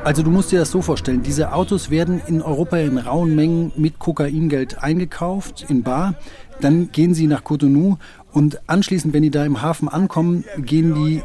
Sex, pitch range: male, 135-160 Hz